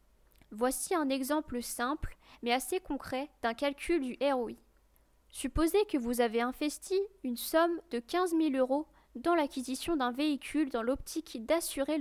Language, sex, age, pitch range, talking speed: French, female, 10-29, 250-310 Hz, 145 wpm